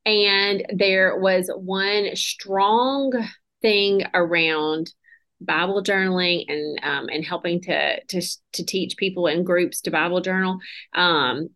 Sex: female